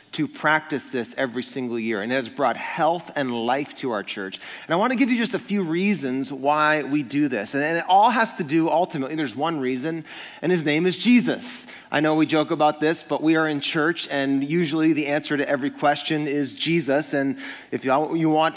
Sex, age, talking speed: male, 30-49, 225 wpm